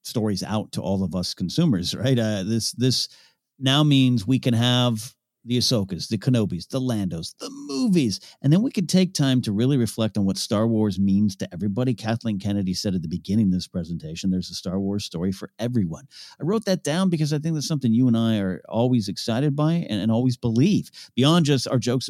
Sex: male